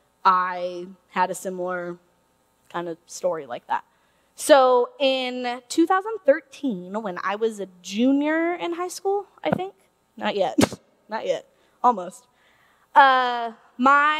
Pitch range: 190-250 Hz